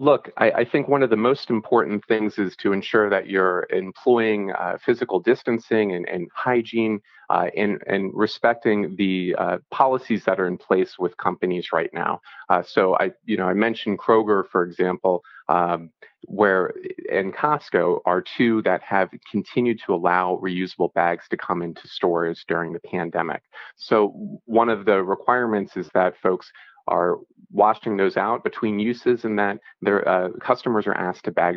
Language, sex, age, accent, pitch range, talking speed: English, male, 30-49, American, 90-115 Hz, 170 wpm